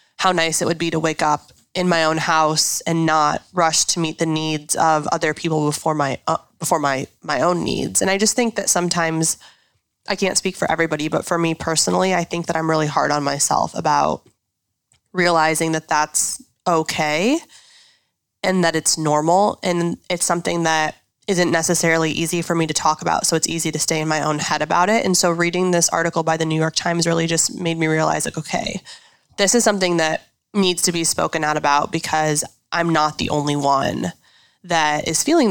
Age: 20-39